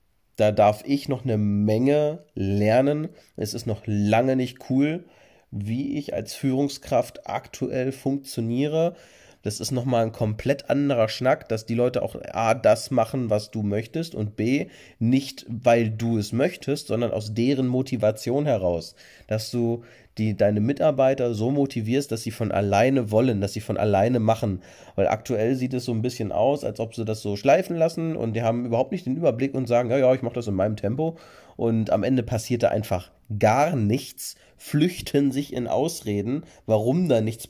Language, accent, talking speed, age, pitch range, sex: German, German, 180 wpm, 30-49, 110-135 Hz, male